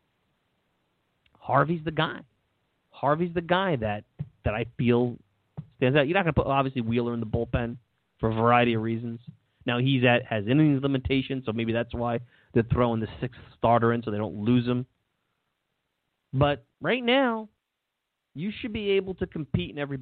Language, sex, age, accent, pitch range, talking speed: English, male, 30-49, American, 115-160 Hz, 175 wpm